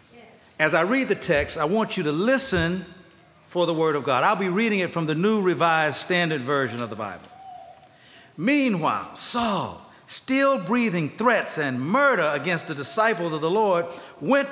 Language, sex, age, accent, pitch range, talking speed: English, male, 50-69, American, 160-235 Hz, 175 wpm